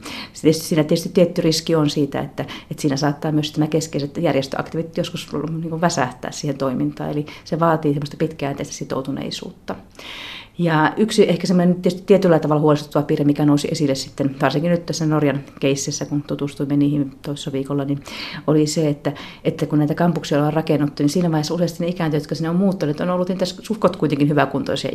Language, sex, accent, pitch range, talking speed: Finnish, female, native, 145-165 Hz, 180 wpm